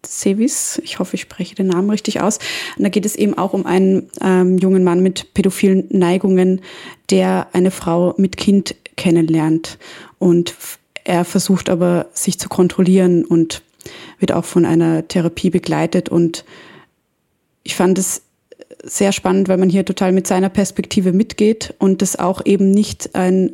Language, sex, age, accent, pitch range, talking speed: German, female, 20-39, German, 180-195 Hz, 165 wpm